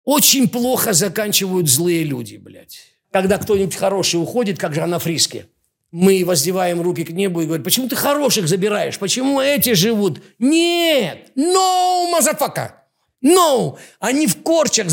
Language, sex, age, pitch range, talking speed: Russian, male, 50-69, 155-240 Hz, 145 wpm